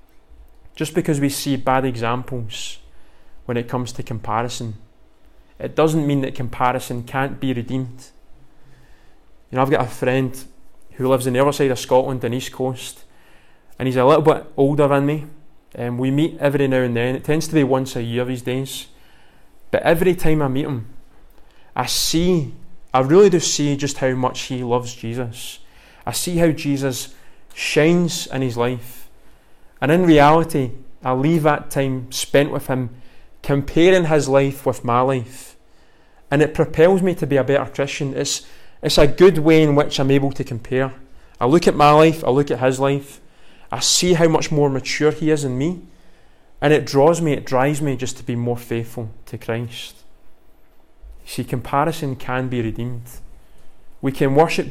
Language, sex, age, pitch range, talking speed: English, male, 20-39, 125-150 Hz, 180 wpm